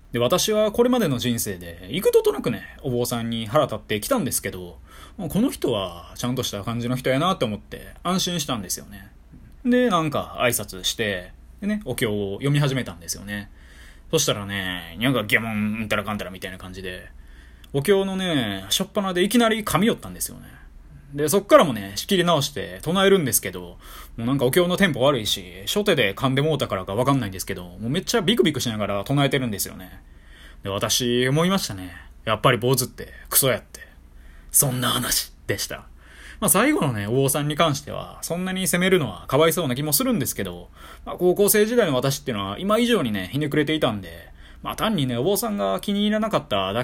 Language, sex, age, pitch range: Japanese, male, 20-39, 100-160 Hz